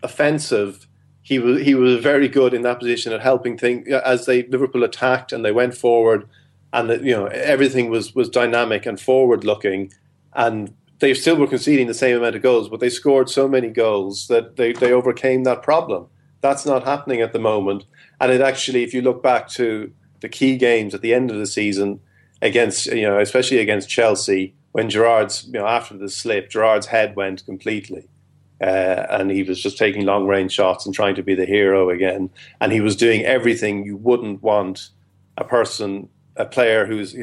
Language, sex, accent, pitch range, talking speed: English, male, Irish, 100-130 Hz, 200 wpm